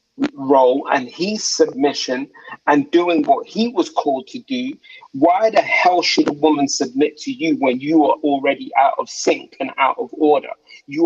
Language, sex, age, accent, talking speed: English, male, 30-49, British, 180 wpm